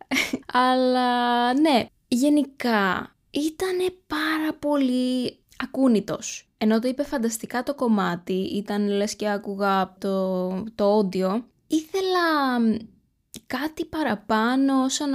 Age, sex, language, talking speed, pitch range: 20-39, female, Greek, 95 wpm, 205-255 Hz